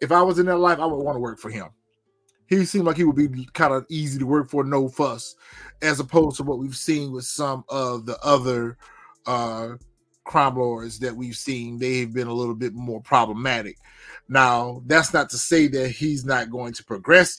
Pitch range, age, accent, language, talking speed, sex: 120-150 Hz, 30-49, American, English, 215 wpm, male